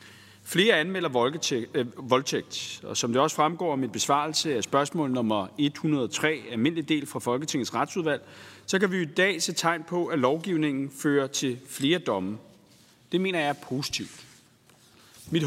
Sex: male